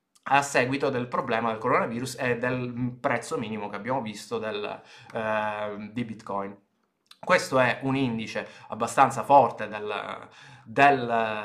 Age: 20-39